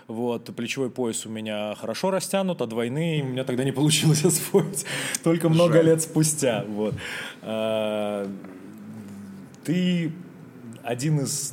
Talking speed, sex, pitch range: 110 wpm, male, 105-140 Hz